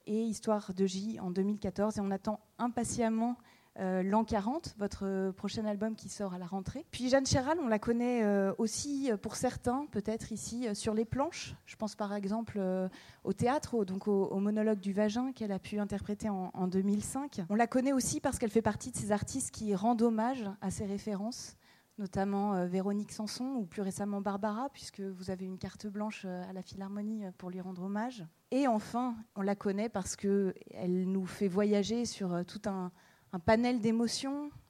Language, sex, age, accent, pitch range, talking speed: French, female, 20-39, French, 195-230 Hz, 190 wpm